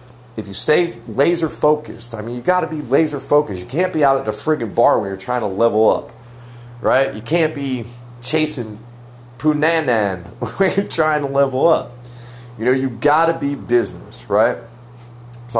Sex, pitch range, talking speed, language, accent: male, 120-145 Hz, 175 wpm, English, American